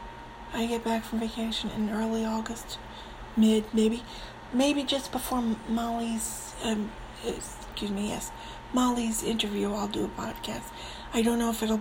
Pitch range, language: 220-245 Hz, English